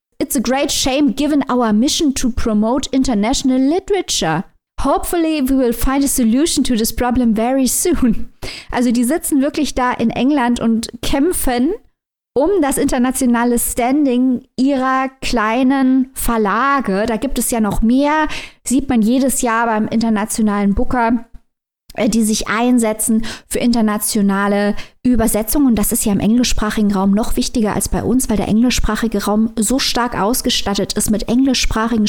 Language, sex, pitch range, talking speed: German, female, 215-265 Hz, 150 wpm